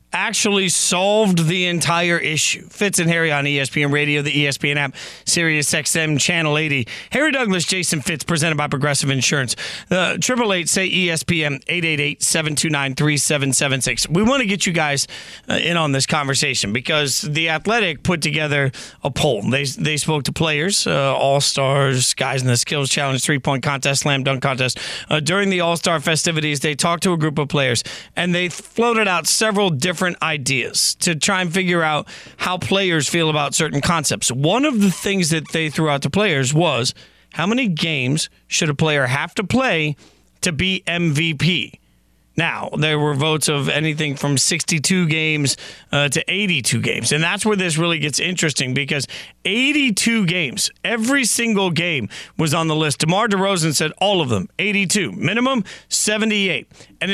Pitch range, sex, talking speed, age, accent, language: 145-185 Hz, male, 165 wpm, 30-49, American, English